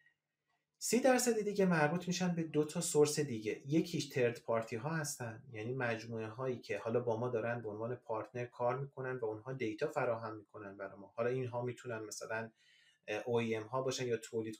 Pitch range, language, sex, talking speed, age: 110-145 Hz, Persian, male, 175 wpm, 30-49